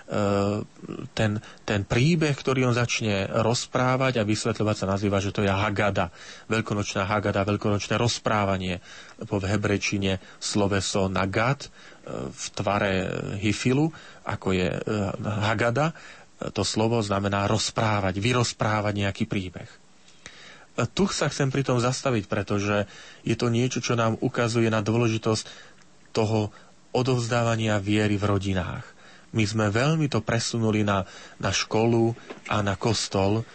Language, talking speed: Slovak, 120 wpm